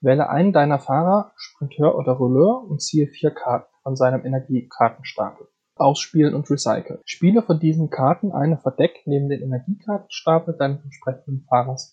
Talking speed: 145 wpm